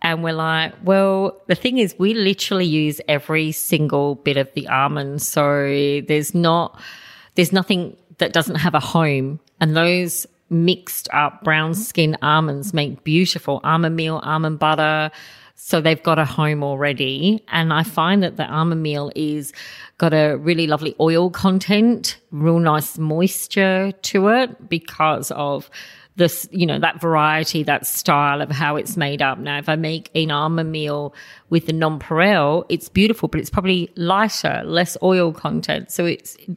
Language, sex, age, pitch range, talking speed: English, female, 40-59, 155-185 Hz, 160 wpm